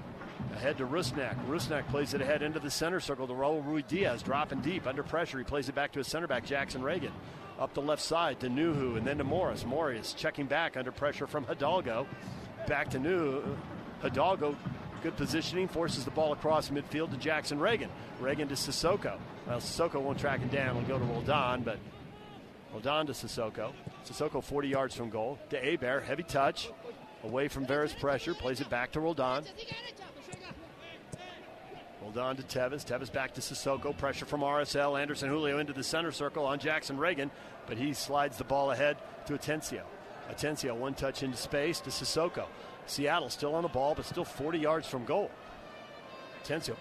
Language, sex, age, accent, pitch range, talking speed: English, male, 50-69, American, 130-155 Hz, 180 wpm